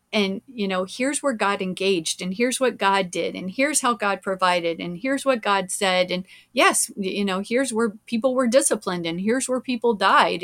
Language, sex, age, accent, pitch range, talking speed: English, female, 30-49, American, 185-230 Hz, 205 wpm